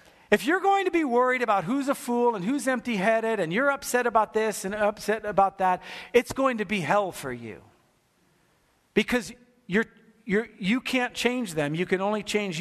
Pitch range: 200-250 Hz